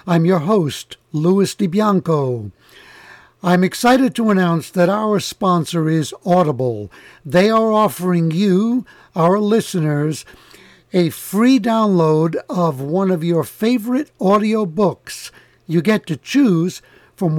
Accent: American